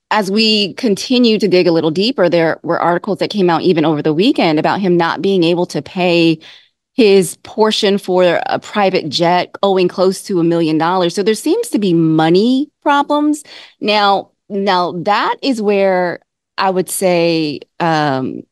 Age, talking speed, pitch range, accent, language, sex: 20-39, 170 wpm, 165-205 Hz, American, English, female